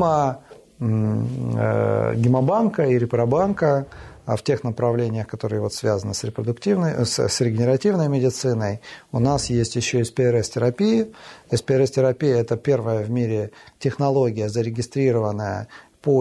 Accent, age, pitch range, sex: native, 40-59, 115-140 Hz, male